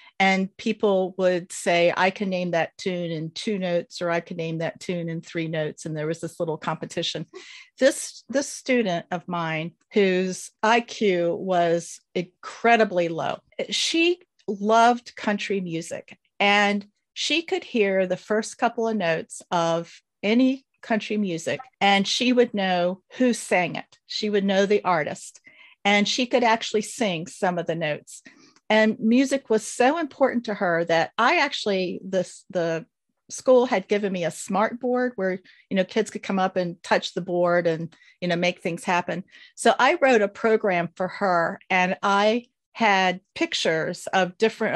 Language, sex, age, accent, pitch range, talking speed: English, female, 50-69, American, 180-225 Hz, 165 wpm